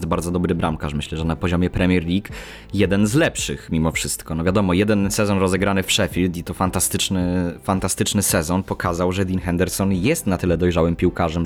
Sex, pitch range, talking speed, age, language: male, 90-115 Hz, 185 wpm, 20-39, Polish